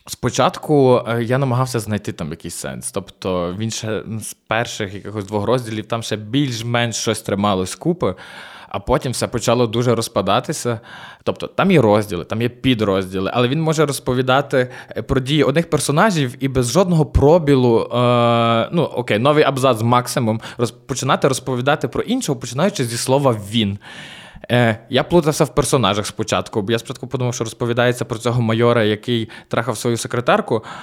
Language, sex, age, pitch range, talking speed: Ukrainian, male, 20-39, 115-145 Hz, 150 wpm